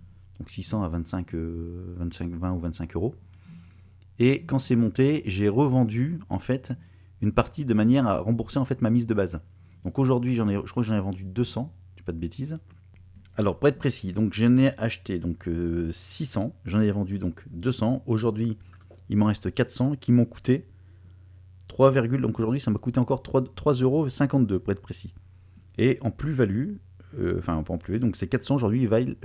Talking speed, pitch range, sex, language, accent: 200 wpm, 90-120 Hz, male, French, French